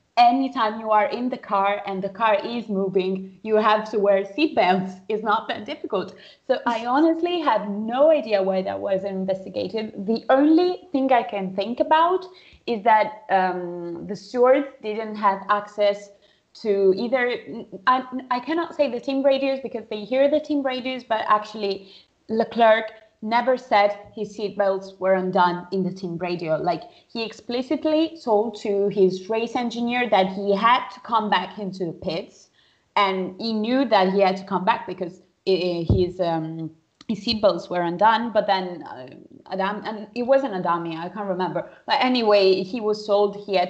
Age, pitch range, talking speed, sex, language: 20-39, 190-235 Hz, 170 wpm, female, English